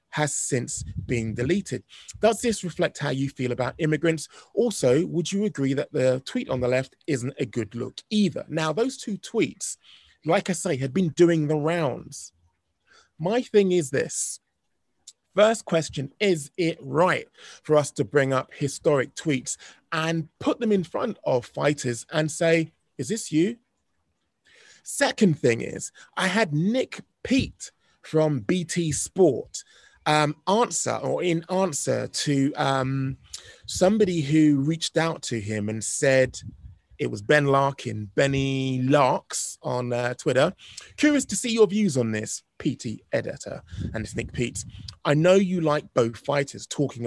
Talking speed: 155 wpm